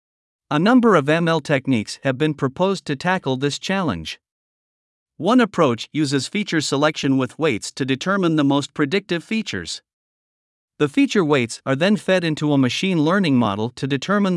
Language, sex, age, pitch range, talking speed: Vietnamese, male, 50-69, 135-170 Hz, 160 wpm